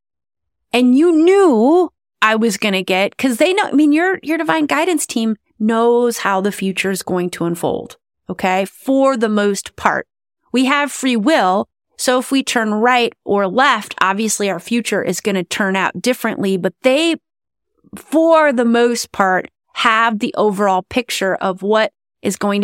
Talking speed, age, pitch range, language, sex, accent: 170 wpm, 30-49, 190-245 Hz, English, female, American